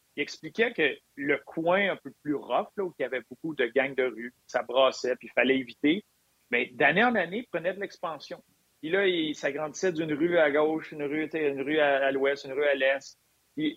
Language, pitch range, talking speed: French, 135-175 Hz, 225 wpm